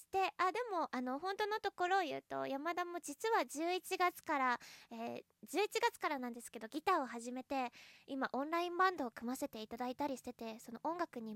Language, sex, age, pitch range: Japanese, female, 20-39, 240-340 Hz